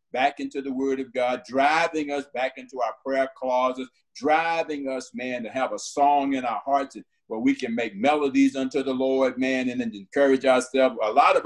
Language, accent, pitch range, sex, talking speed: English, American, 120-140 Hz, male, 205 wpm